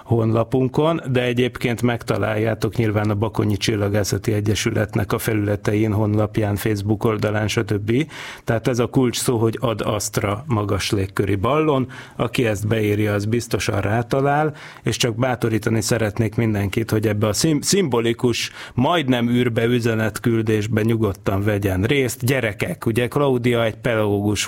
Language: Hungarian